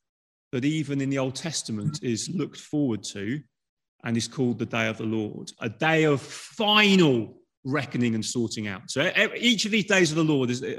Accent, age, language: British, 30-49, English